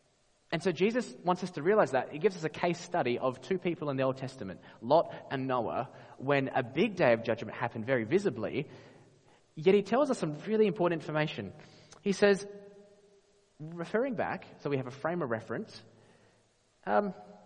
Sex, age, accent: male, 20-39, Australian